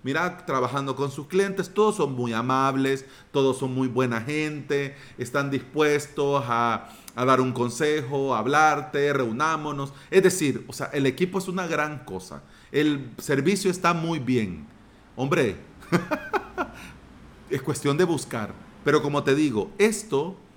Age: 40-59